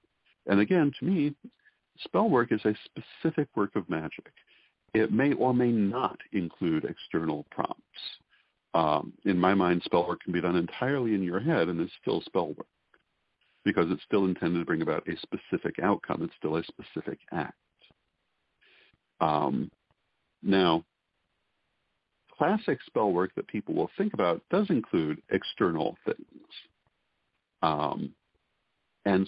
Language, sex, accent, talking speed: English, male, American, 140 wpm